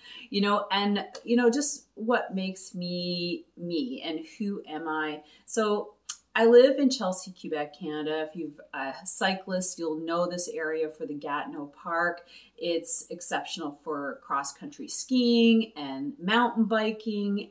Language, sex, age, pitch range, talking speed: English, female, 30-49, 170-230 Hz, 140 wpm